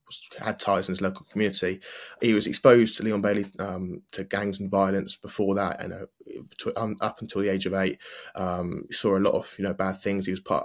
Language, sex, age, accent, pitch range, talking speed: English, male, 20-39, British, 95-105 Hz, 225 wpm